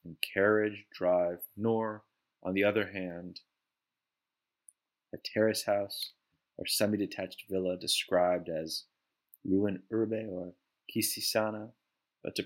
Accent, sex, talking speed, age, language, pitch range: American, male, 105 wpm, 30-49, English, 95-110 Hz